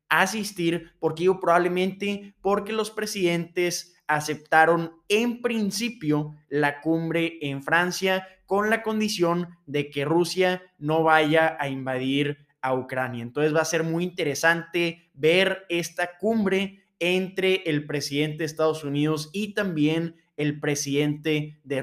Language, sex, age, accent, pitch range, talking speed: Spanish, male, 20-39, Mexican, 145-175 Hz, 125 wpm